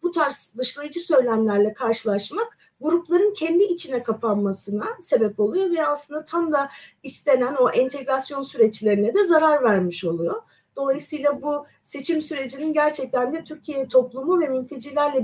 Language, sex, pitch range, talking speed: Turkish, female, 225-340 Hz, 120 wpm